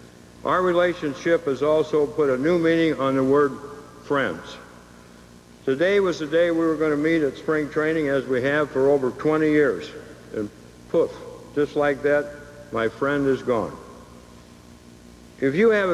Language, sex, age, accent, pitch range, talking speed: English, male, 60-79, American, 120-160 Hz, 160 wpm